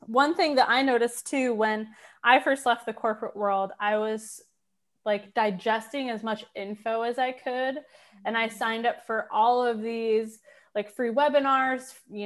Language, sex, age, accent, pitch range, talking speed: English, female, 20-39, American, 210-250 Hz, 170 wpm